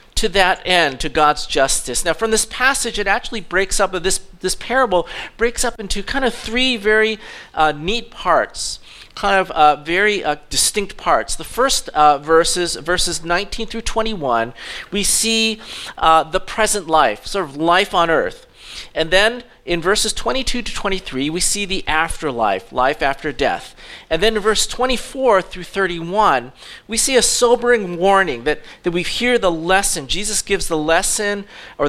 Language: English